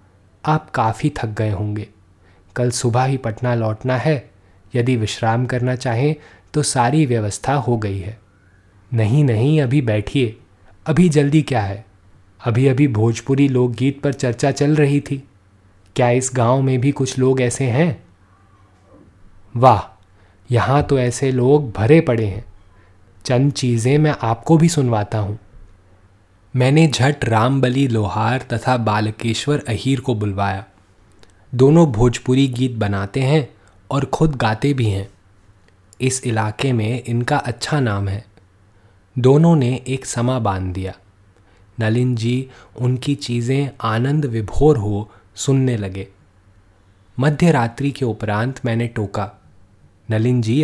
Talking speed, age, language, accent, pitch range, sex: 135 wpm, 20-39, Hindi, native, 100-130 Hz, male